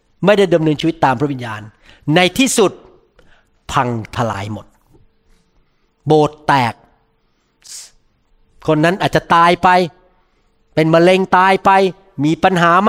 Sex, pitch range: male, 135-190 Hz